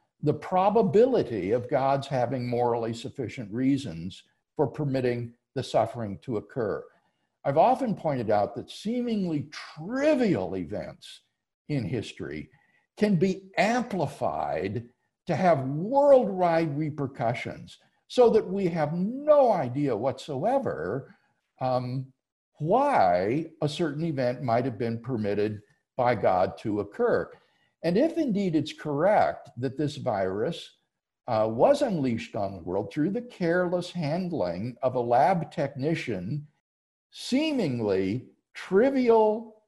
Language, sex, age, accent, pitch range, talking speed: English, male, 60-79, American, 120-185 Hz, 115 wpm